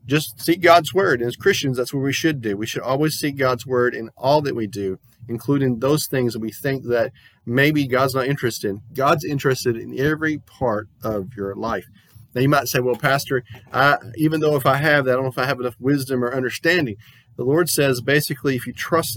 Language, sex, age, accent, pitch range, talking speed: English, male, 40-59, American, 120-150 Hz, 225 wpm